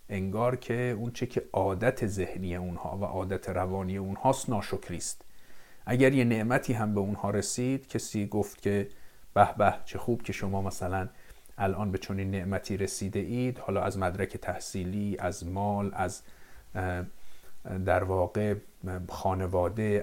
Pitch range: 95-120 Hz